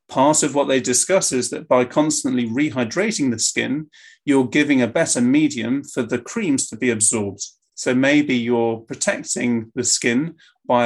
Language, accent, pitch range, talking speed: English, British, 130-200 Hz, 165 wpm